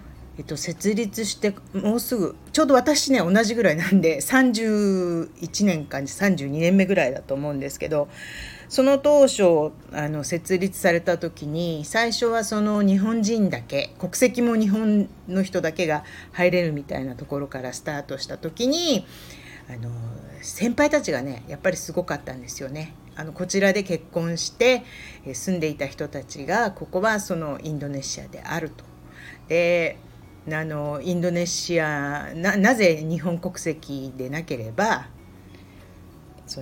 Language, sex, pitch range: Japanese, female, 135-190 Hz